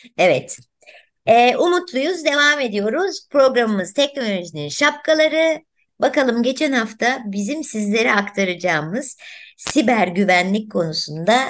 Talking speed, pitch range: 90 wpm, 195-265 Hz